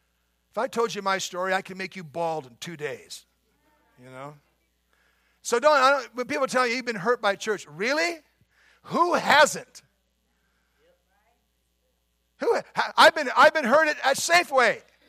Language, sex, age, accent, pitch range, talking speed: English, male, 50-69, American, 200-290 Hz, 160 wpm